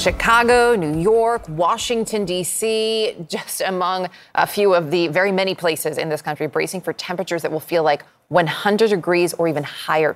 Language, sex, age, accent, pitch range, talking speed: English, female, 30-49, American, 160-195 Hz, 170 wpm